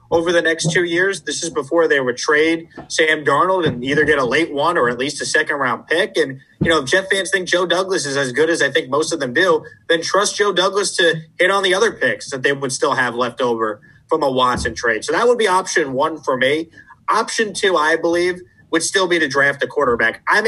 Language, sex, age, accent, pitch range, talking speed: English, male, 30-49, American, 155-195 Hz, 250 wpm